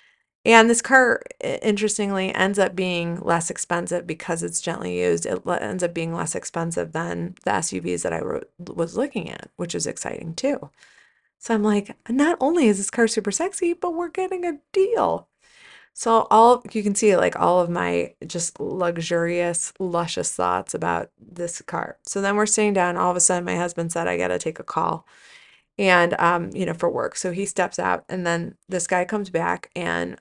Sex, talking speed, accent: female, 195 wpm, American